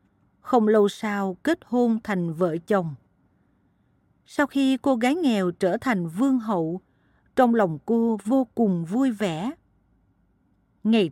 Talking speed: 135 wpm